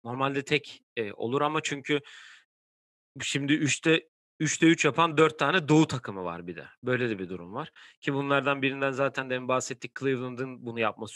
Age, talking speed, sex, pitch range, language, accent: 40-59, 165 wpm, male, 120-145 Hz, Turkish, native